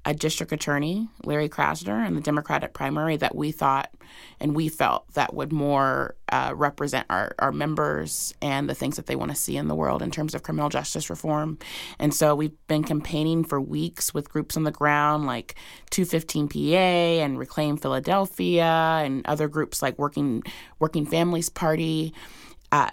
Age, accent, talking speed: 30-49, American, 175 wpm